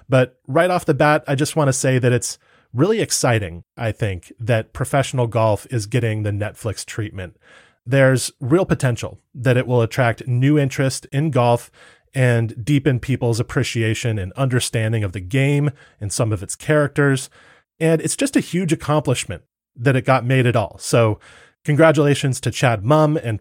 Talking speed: 170 wpm